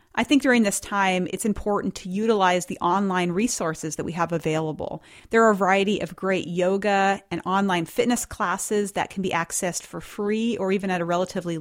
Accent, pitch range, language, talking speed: American, 175-215 Hz, English, 195 wpm